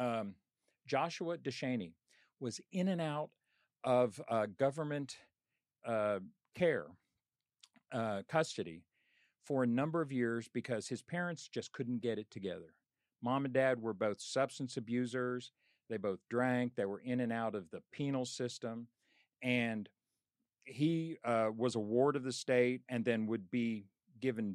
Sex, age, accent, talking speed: male, 50-69, American, 145 wpm